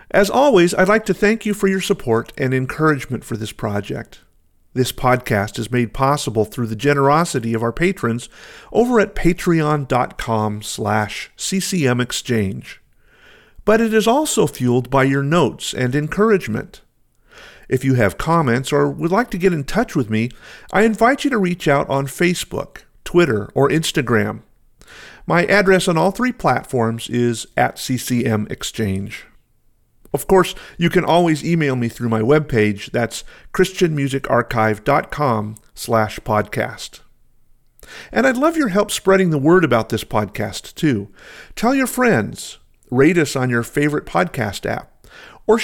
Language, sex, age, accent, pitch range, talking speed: English, male, 50-69, American, 115-190 Hz, 145 wpm